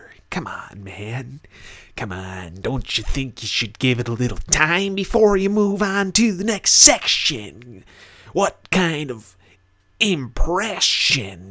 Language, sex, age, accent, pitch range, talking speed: English, male, 30-49, American, 95-130 Hz, 140 wpm